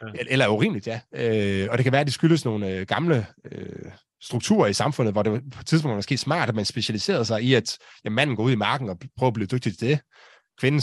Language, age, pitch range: Danish, 30-49, 110-140 Hz